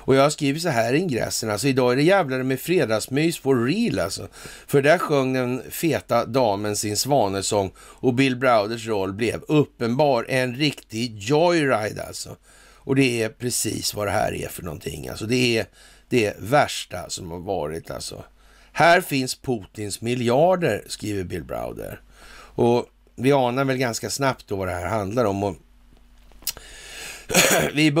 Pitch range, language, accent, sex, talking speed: 105-140 Hz, Swedish, native, male, 165 wpm